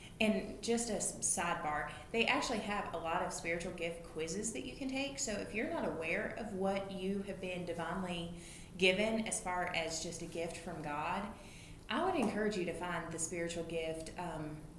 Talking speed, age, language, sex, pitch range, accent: 190 wpm, 20-39, English, female, 165-200 Hz, American